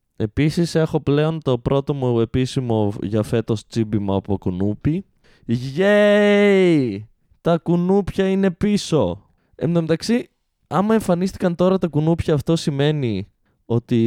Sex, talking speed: male, 110 wpm